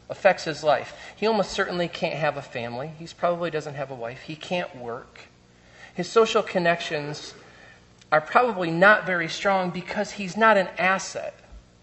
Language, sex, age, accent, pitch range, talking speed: English, male, 40-59, American, 125-180 Hz, 160 wpm